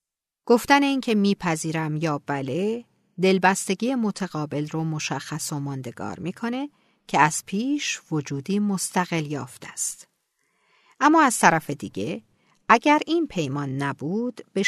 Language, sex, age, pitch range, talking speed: Persian, female, 50-69, 155-210 Hz, 115 wpm